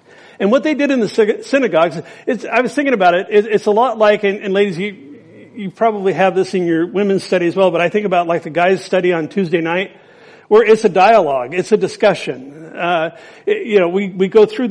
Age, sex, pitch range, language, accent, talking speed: 50-69, male, 180-240 Hz, English, American, 235 wpm